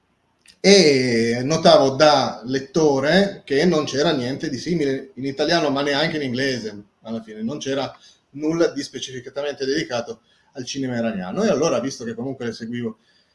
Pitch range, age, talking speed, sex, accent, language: 120-155 Hz, 30-49, 155 wpm, male, native, Italian